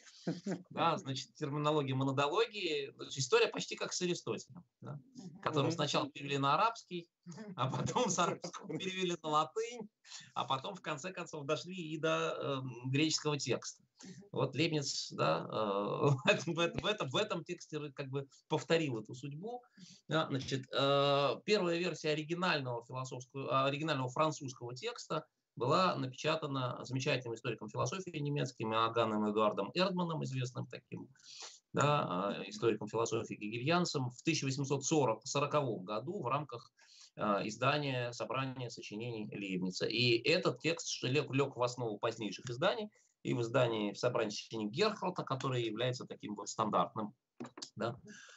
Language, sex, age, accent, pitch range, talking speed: Russian, male, 20-39, native, 125-165 Hz, 125 wpm